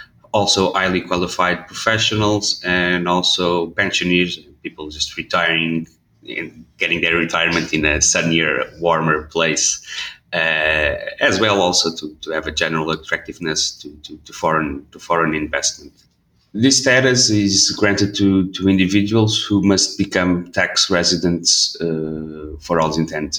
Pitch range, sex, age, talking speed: 80-95 Hz, male, 30-49, 135 wpm